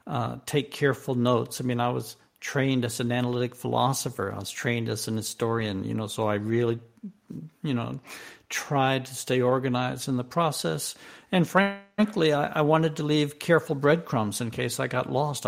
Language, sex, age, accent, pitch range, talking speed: English, male, 60-79, American, 125-160 Hz, 180 wpm